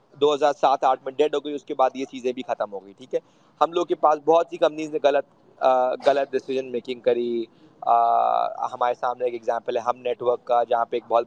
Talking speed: 230 wpm